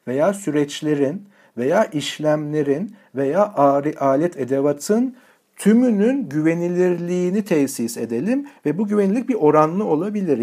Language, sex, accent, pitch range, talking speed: Turkish, male, native, 140-205 Hz, 100 wpm